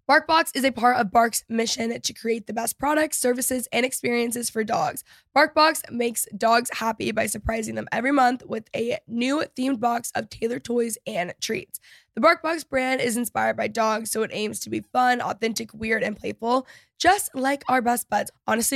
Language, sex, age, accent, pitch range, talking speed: English, female, 10-29, American, 220-260 Hz, 190 wpm